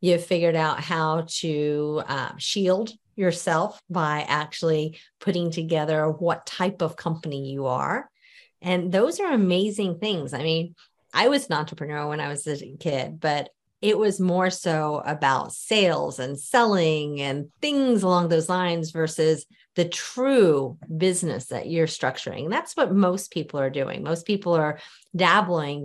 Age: 40-59